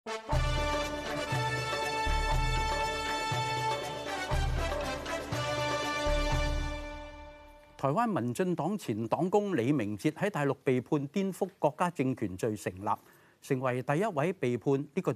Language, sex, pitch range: Chinese, male, 110-165 Hz